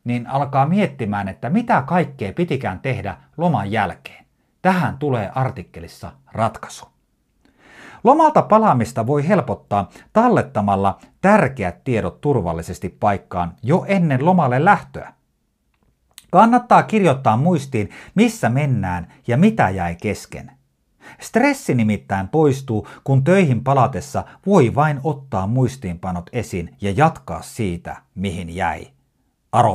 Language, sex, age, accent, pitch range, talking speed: Finnish, male, 50-69, native, 95-150 Hz, 105 wpm